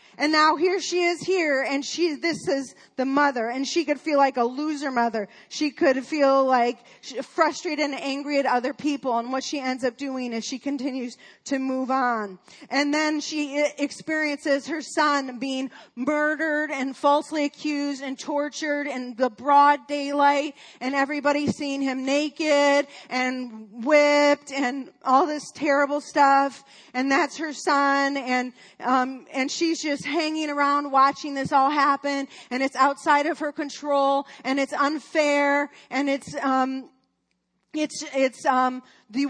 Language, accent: English, American